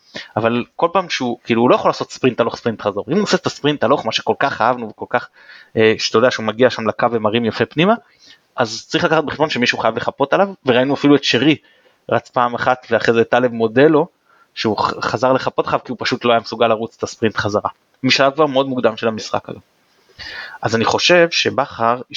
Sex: male